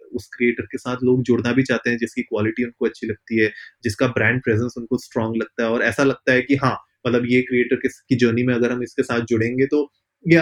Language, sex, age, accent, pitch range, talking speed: Hindi, male, 20-39, native, 120-140 Hz, 235 wpm